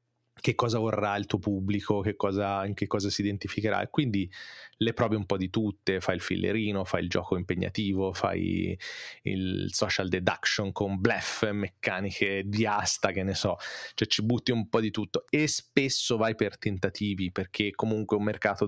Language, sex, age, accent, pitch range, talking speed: Italian, male, 20-39, native, 100-115 Hz, 185 wpm